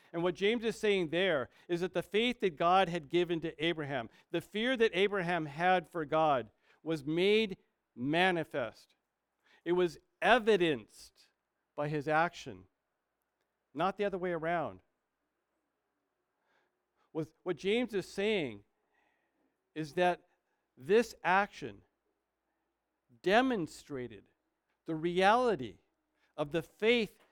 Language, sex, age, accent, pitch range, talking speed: English, male, 50-69, American, 150-190 Hz, 110 wpm